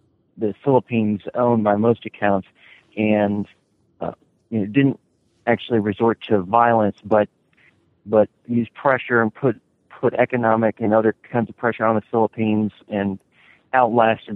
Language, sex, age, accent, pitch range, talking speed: English, male, 40-59, American, 100-115 Hz, 140 wpm